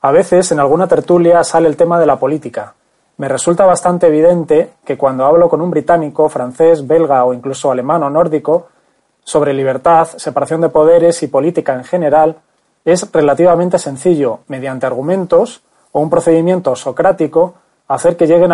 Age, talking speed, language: 30-49, 160 wpm, Spanish